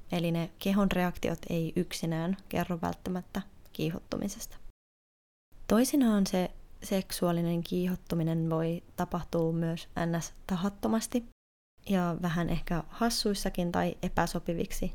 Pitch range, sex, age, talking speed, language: 170-195 Hz, female, 20-39, 95 wpm, Finnish